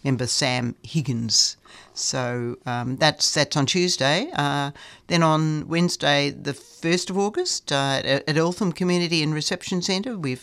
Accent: Australian